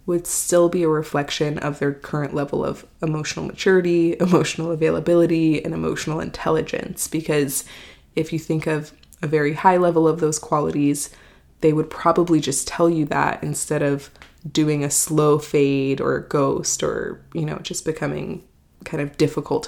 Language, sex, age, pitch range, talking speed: English, female, 20-39, 150-175 Hz, 160 wpm